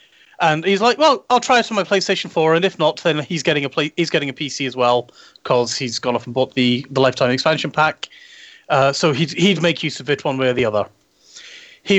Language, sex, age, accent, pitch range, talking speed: English, male, 30-49, British, 140-175 Hz, 250 wpm